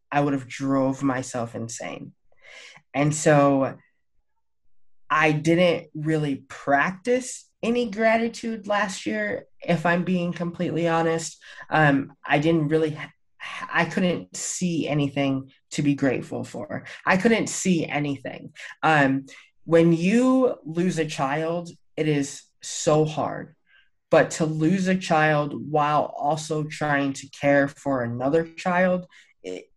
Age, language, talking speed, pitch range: 20-39, English, 125 wpm, 140-165 Hz